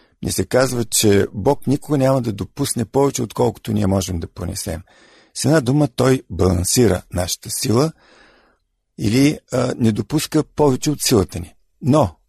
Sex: male